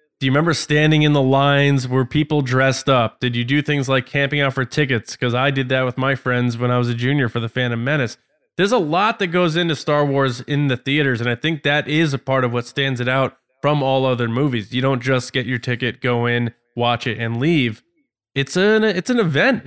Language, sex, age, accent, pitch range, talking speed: English, male, 20-39, American, 120-150 Hz, 240 wpm